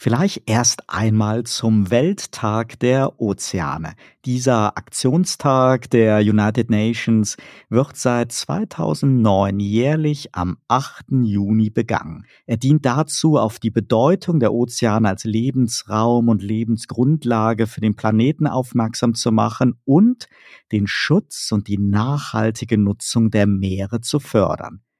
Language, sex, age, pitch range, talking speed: German, male, 50-69, 110-130 Hz, 120 wpm